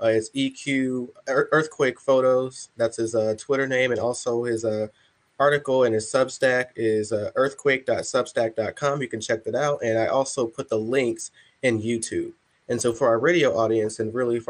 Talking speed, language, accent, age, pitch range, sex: 180 wpm, English, American, 20-39, 110-135 Hz, male